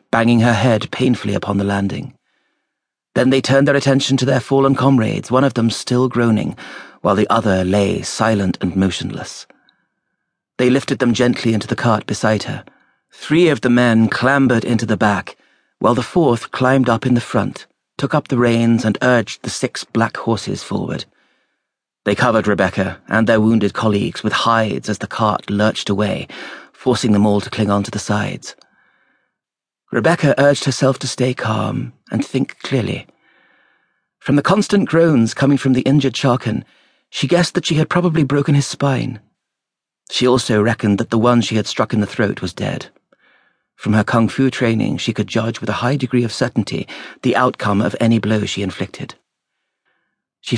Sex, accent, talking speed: male, British, 175 wpm